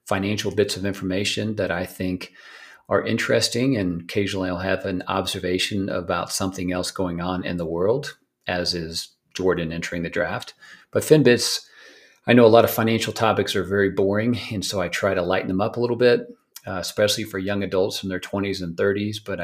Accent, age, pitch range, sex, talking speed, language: American, 40-59, 90-100 Hz, male, 195 wpm, English